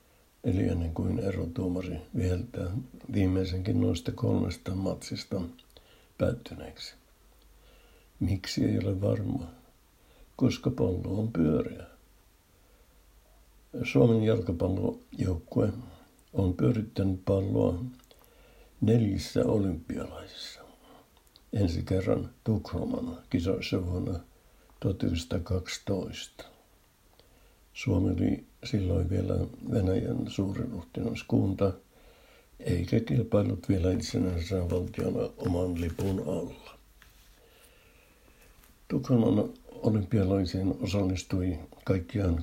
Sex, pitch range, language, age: male, 90-105 Hz, Finnish, 60-79